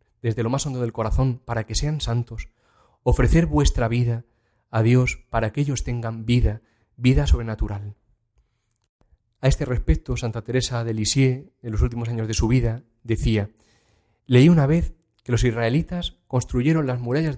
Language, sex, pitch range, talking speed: Spanish, male, 115-140 Hz, 160 wpm